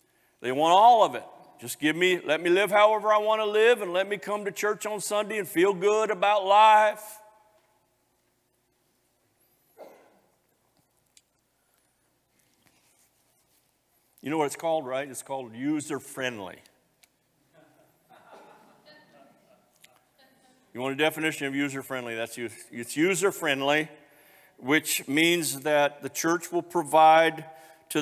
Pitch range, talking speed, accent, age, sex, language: 120-200 Hz, 120 wpm, American, 50-69, male, English